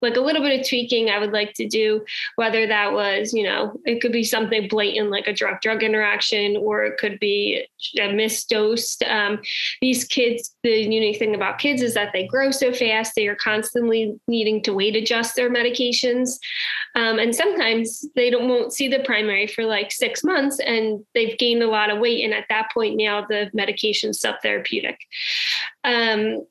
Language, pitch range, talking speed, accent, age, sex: English, 210-245 Hz, 195 wpm, American, 10-29, female